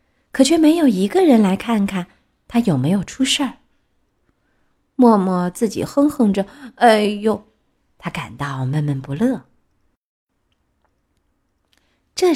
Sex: female